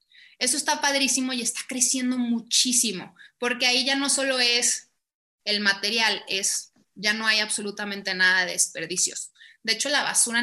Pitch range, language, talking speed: 205-265 Hz, English, 155 wpm